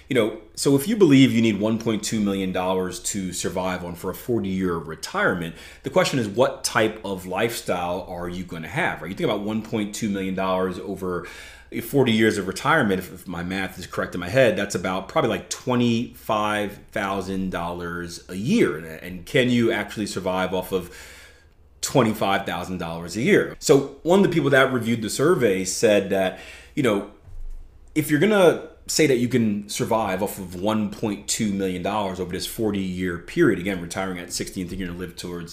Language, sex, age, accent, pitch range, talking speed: English, male, 30-49, American, 90-115 Hz, 175 wpm